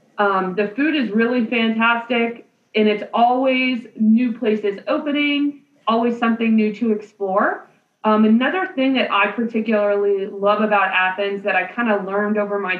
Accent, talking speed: American, 155 wpm